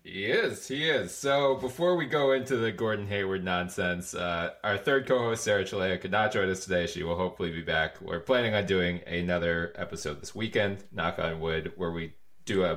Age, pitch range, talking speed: 20-39, 85-100 Hz, 205 wpm